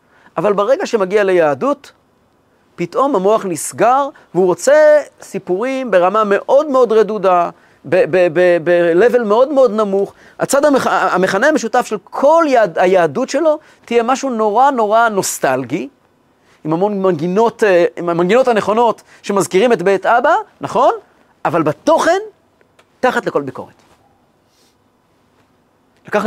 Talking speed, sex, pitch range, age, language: 115 wpm, male, 165-240 Hz, 30-49, Hebrew